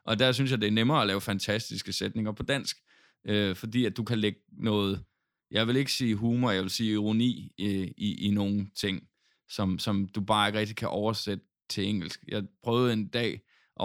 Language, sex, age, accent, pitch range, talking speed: Danish, male, 20-39, native, 100-115 Hz, 210 wpm